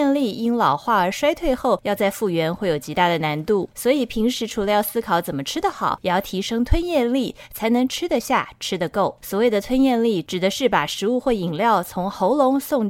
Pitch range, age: 180-255 Hz, 20-39